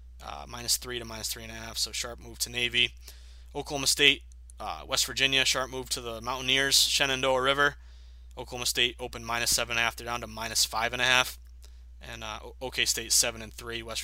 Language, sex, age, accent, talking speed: English, male, 20-39, American, 215 wpm